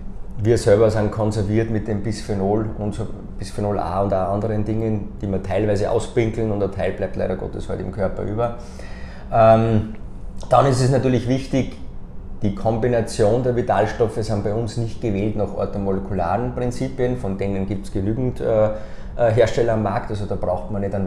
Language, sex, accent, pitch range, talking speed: German, male, Austrian, 90-110 Hz, 175 wpm